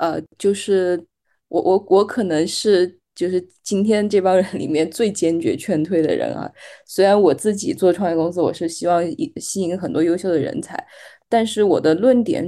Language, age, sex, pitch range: Chinese, 20-39, female, 150-185 Hz